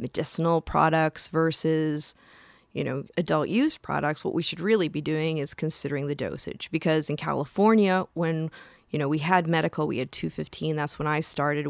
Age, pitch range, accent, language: 20-39, 155-190 Hz, American, English